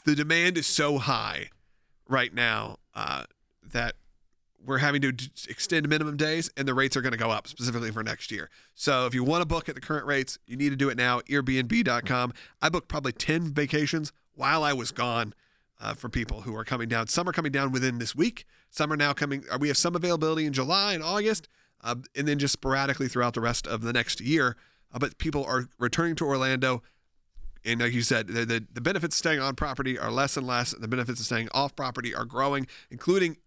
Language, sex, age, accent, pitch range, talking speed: English, male, 40-59, American, 125-150 Hz, 220 wpm